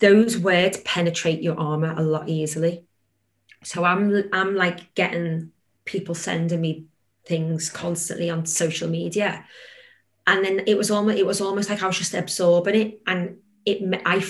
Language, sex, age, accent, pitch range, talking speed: English, female, 30-49, British, 165-205 Hz, 160 wpm